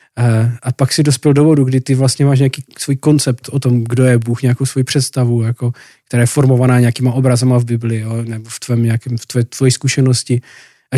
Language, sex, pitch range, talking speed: Slovak, male, 120-140 Hz, 200 wpm